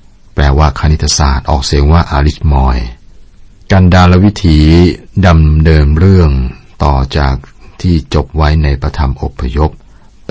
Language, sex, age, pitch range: Thai, male, 60-79, 70-80 Hz